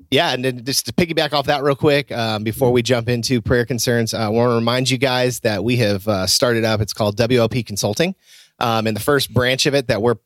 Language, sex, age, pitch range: English, male, 30-49, 115-135 Hz